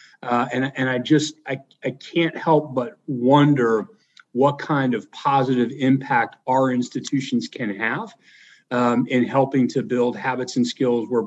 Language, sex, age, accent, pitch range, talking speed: English, male, 40-59, American, 120-135 Hz, 155 wpm